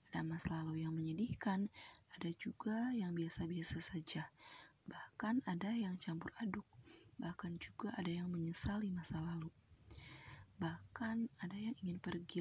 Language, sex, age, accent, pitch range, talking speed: Indonesian, female, 20-39, native, 155-195 Hz, 125 wpm